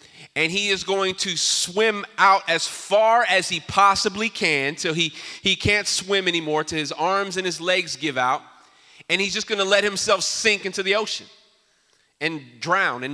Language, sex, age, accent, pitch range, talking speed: English, male, 30-49, American, 185-245 Hz, 185 wpm